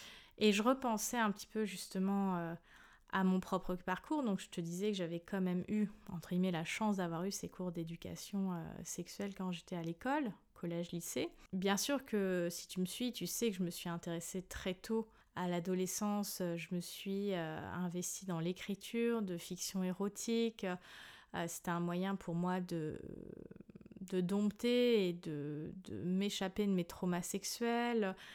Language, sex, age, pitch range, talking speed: French, female, 20-39, 175-205 Hz, 175 wpm